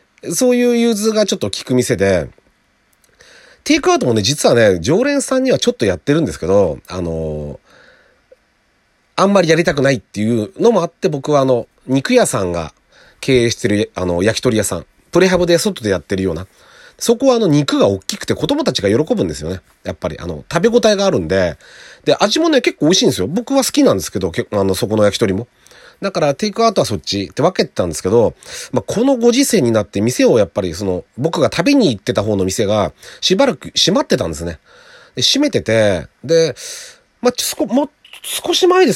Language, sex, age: Japanese, male, 40-59